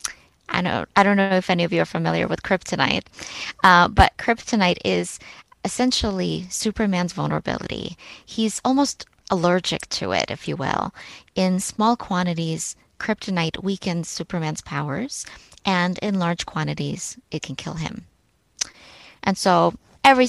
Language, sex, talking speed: English, female, 135 wpm